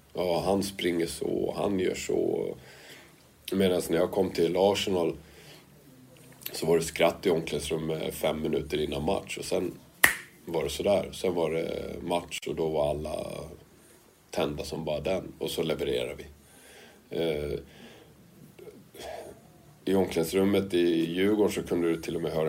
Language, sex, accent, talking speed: English, male, Swedish, 150 wpm